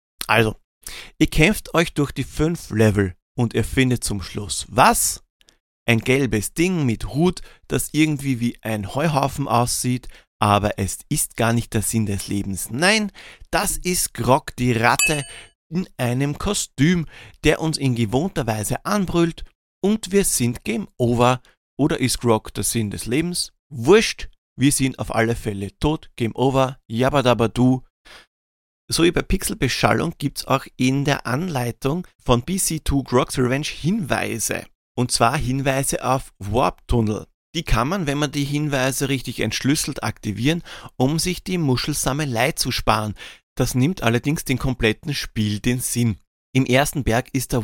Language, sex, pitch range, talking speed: German, male, 115-150 Hz, 150 wpm